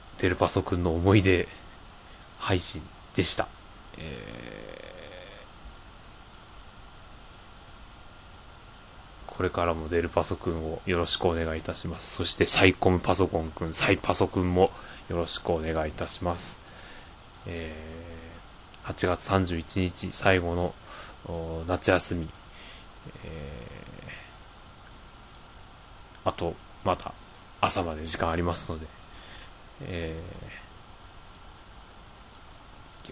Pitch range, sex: 85-100 Hz, male